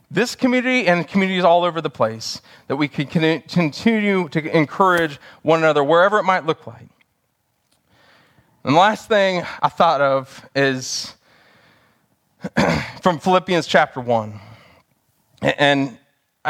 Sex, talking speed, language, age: male, 125 wpm, English, 20-39